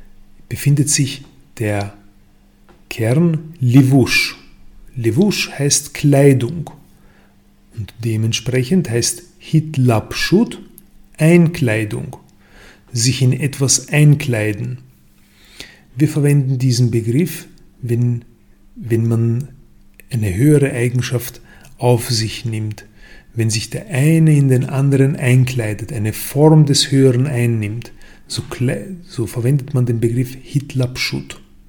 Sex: male